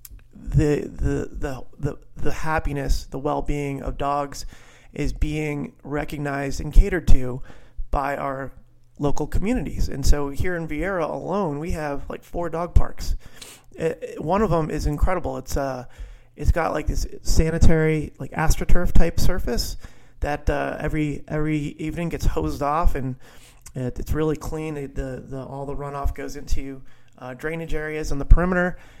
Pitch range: 130-155 Hz